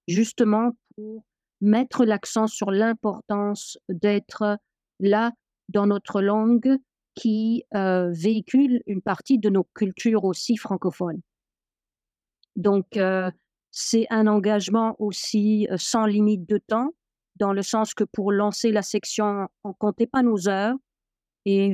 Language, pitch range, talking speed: French, 200-230 Hz, 125 wpm